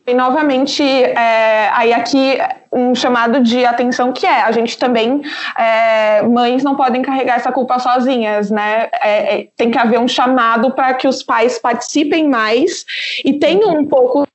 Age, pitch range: 20-39, 235-285 Hz